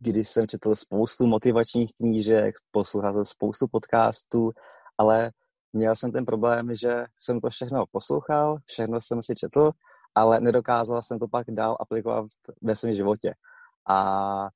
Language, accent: Czech, native